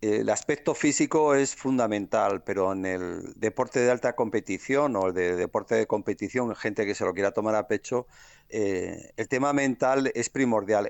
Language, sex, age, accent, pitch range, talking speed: Spanish, male, 50-69, Spanish, 115-145 Hz, 170 wpm